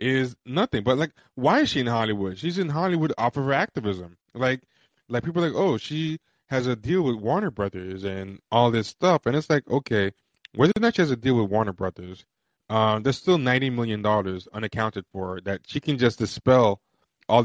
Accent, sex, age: American, male, 20-39